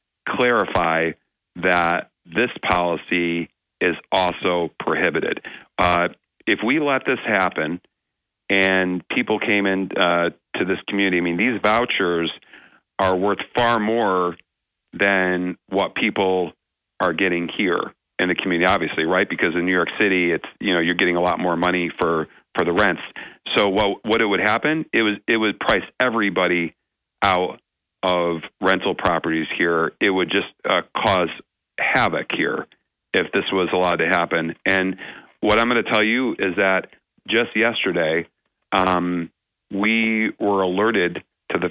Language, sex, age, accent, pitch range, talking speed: English, male, 40-59, American, 85-105 Hz, 150 wpm